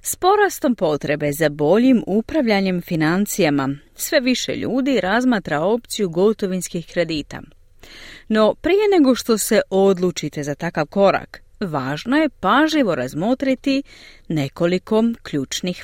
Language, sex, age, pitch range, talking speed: Croatian, female, 40-59, 170-275 Hz, 110 wpm